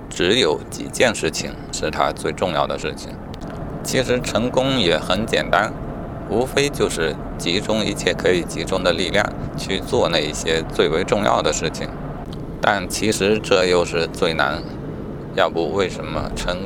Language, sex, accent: Chinese, male, native